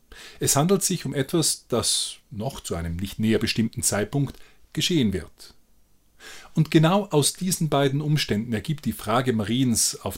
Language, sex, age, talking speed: German, male, 30-49, 155 wpm